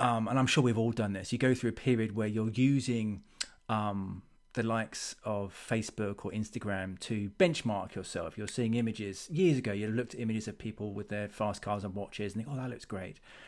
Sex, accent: male, British